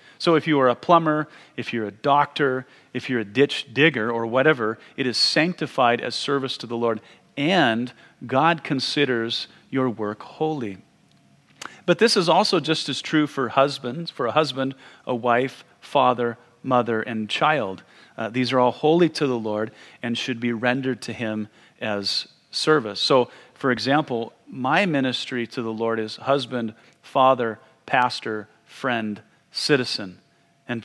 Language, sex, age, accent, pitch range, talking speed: English, male, 40-59, American, 115-150 Hz, 155 wpm